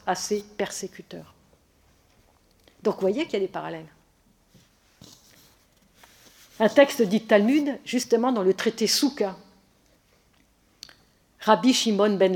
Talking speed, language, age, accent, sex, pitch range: 110 wpm, French, 50-69, French, female, 170-220 Hz